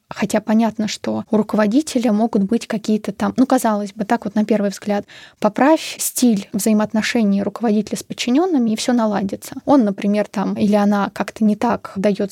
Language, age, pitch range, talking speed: Russian, 20-39, 210-235 Hz, 170 wpm